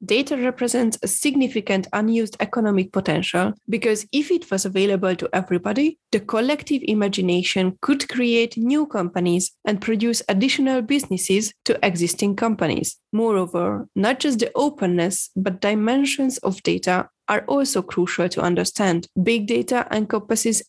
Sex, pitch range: female, 190-245 Hz